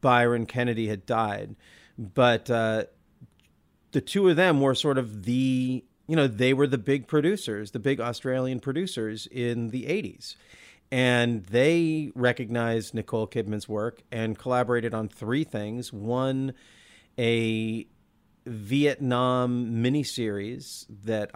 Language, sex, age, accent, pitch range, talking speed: English, male, 40-59, American, 110-140 Hz, 125 wpm